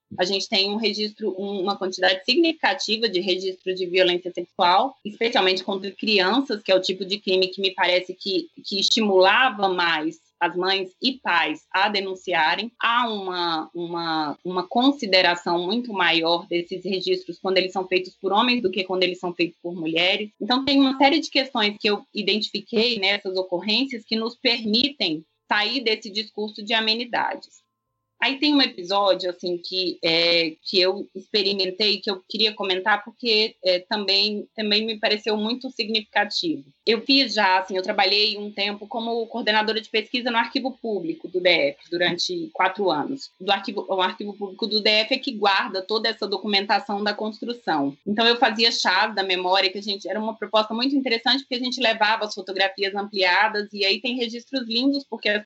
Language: Portuguese